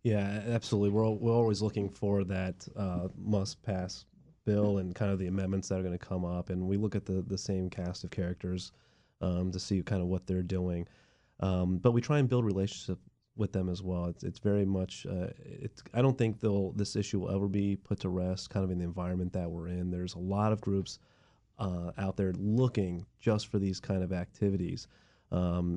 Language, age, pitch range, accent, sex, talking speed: English, 30-49, 90-105 Hz, American, male, 215 wpm